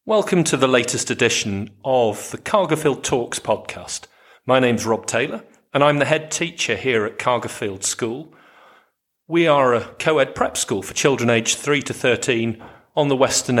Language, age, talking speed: English, 40-59, 170 wpm